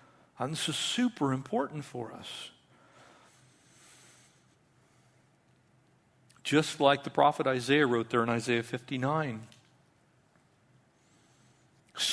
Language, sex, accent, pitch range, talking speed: English, male, American, 130-190 Hz, 85 wpm